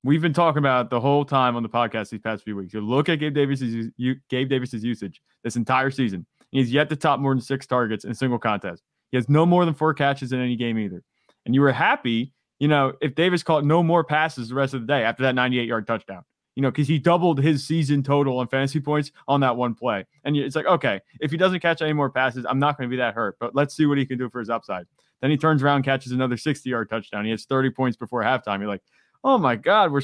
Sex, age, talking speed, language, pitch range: male, 20-39, 260 wpm, English, 120-145 Hz